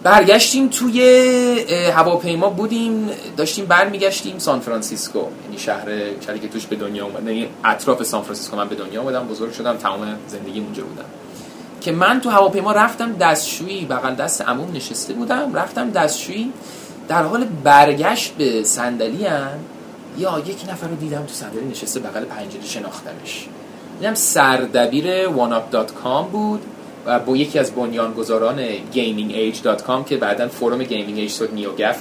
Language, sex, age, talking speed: Persian, male, 30-49, 130 wpm